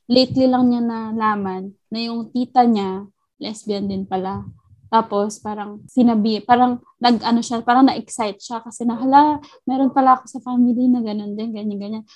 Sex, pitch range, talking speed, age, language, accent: female, 205-250 Hz, 165 wpm, 20-39, Filipino, native